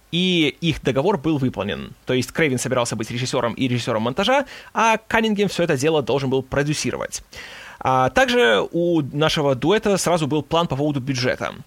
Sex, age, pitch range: male, 20-39, 135-195 Hz